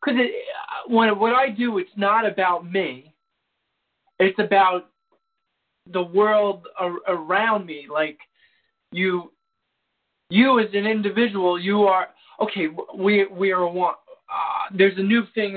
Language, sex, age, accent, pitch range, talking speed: English, male, 40-59, American, 170-225 Hz, 135 wpm